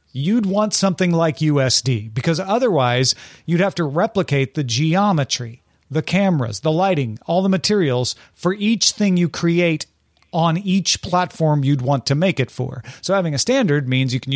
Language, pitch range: English, 130-180 Hz